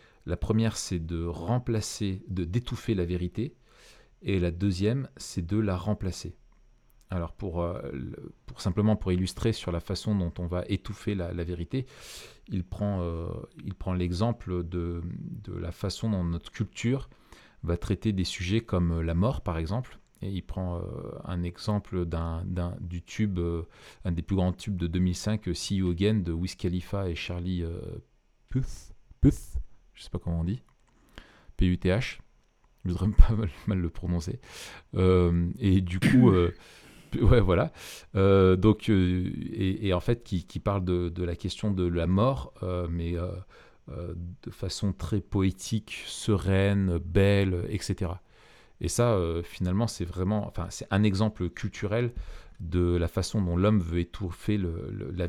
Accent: French